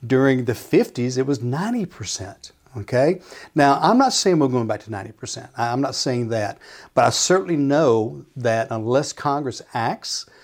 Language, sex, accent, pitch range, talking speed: English, male, American, 120-155 Hz, 160 wpm